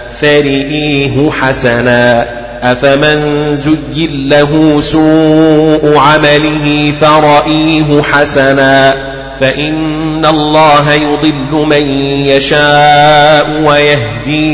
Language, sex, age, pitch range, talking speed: Arabic, male, 30-49, 130-145 Hz, 60 wpm